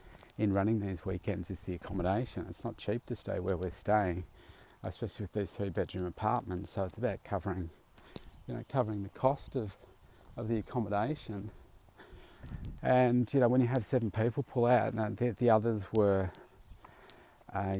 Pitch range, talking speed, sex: 95-110 Hz, 170 wpm, male